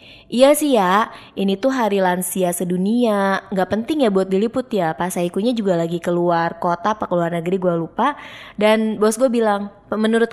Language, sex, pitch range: Indonesian, female, 185-235 Hz